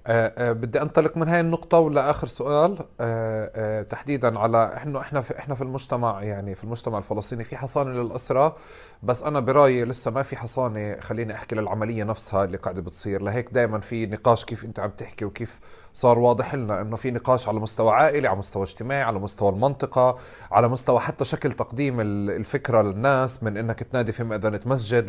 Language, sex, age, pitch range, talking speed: Arabic, male, 30-49, 110-135 Hz, 185 wpm